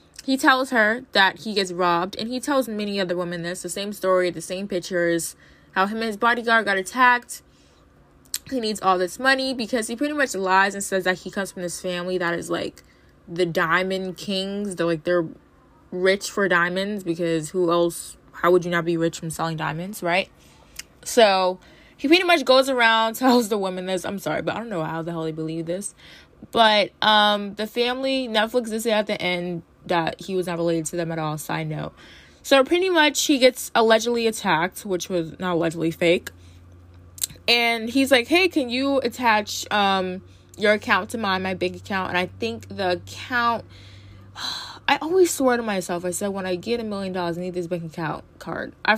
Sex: female